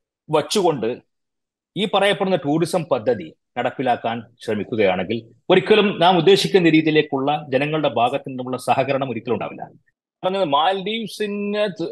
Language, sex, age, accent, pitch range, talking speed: Malayalam, male, 30-49, native, 140-185 Hz, 85 wpm